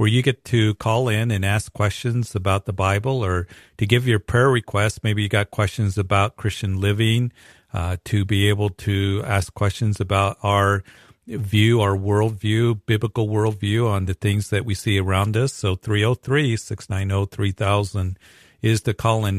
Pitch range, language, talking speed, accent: 95-110 Hz, English, 160 wpm, American